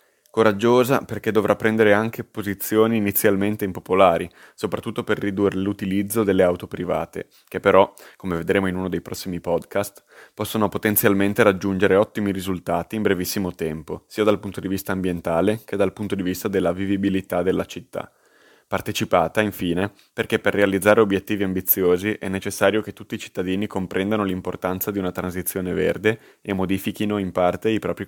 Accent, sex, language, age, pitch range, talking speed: native, male, Italian, 20-39, 90-105 Hz, 155 wpm